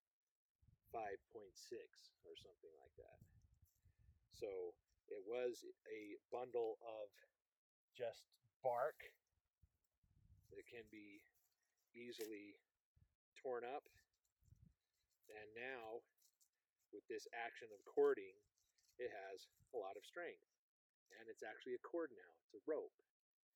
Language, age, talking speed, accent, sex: English, 40-59, 105 wpm, American, male